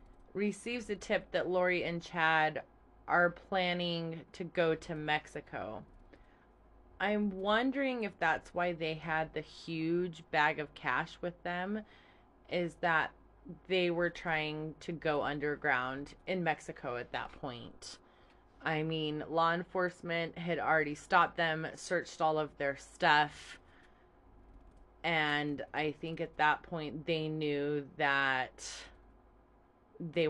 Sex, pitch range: female, 150-180 Hz